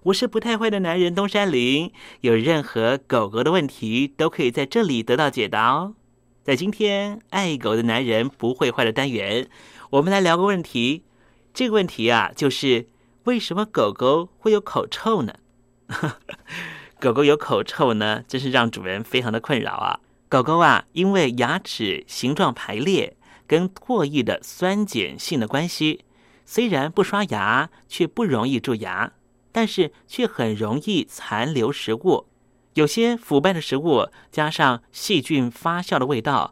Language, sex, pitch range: Chinese, male, 120-195 Hz